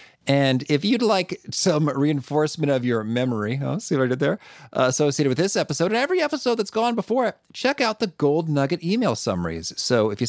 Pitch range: 105-160 Hz